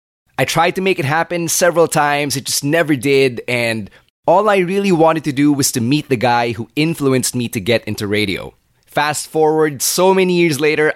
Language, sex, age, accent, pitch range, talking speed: English, male, 20-39, Filipino, 125-155 Hz, 205 wpm